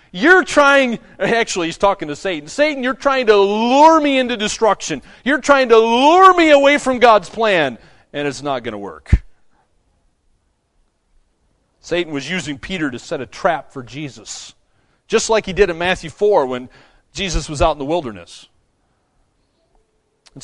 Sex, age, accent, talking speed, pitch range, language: male, 40-59, American, 160 wpm, 165-220 Hz, English